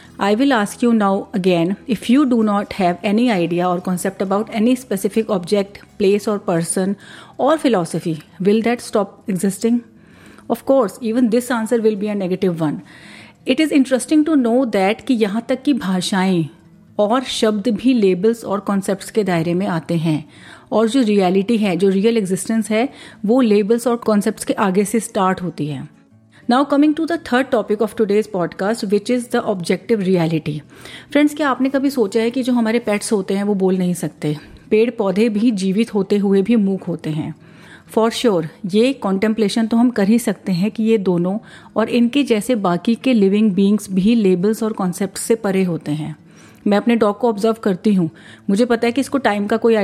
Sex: female